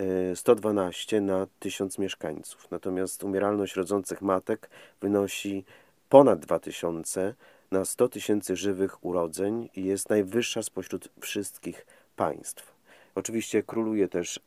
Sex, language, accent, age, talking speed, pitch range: male, Polish, native, 40-59, 105 wpm, 90-105 Hz